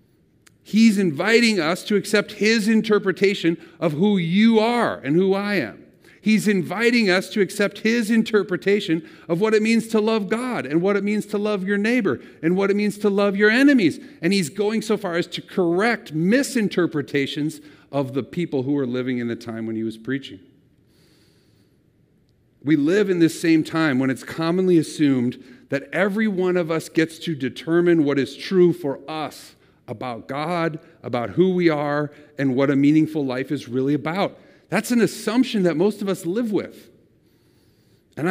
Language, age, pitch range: English, 50-69, 155-210 Hz